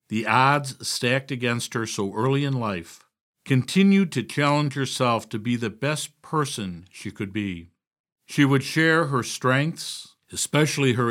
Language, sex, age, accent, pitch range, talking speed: English, male, 60-79, American, 105-140 Hz, 150 wpm